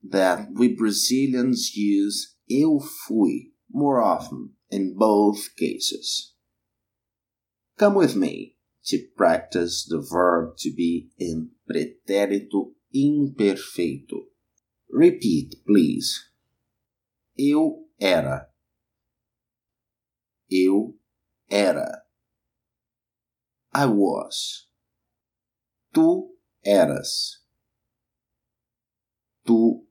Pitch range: 105-145 Hz